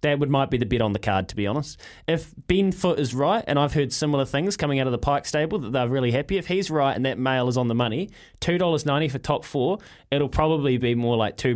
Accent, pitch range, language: Australian, 110-145 Hz, English